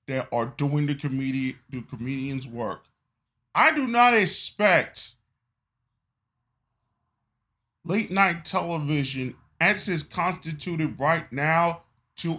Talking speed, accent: 100 wpm, American